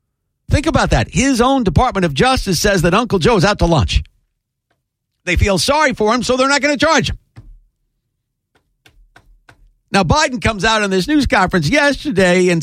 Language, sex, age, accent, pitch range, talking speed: English, male, 50-69, American, 170-245 Hz, 180 wpm